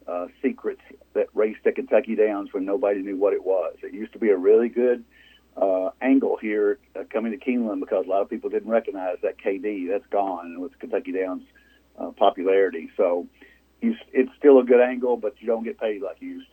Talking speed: 205 wpm